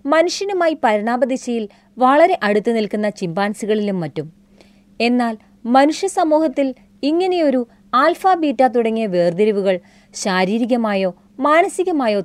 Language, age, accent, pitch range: Malayalam, 30-49, native, 190-270 Hz